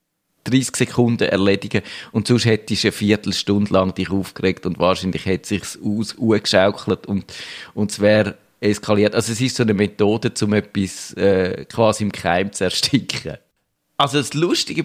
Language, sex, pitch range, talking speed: German, male, 105-135 Hz, 165 wpm